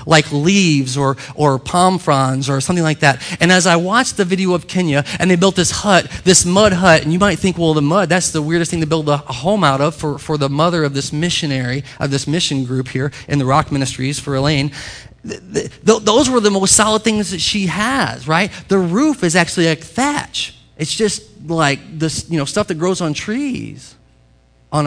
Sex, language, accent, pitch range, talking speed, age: male, English, American, 145-205 Hz, 220 wpm, 30-49